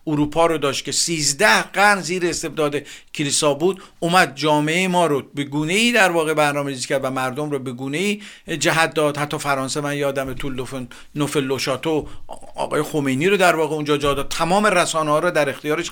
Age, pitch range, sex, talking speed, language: 50-69, 145-175 Hz, male, 175 wpm, Persian